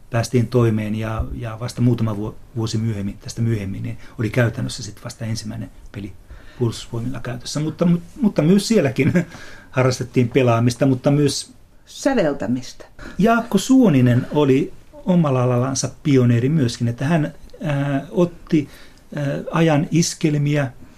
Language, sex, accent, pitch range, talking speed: Finnish, male, native, 120-145 Hz, 115 wpm